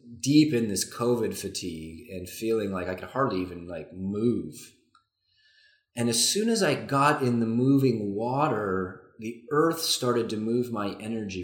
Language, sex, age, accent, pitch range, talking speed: English, male, 30-49, American, 95-125 Hz, 165 wpm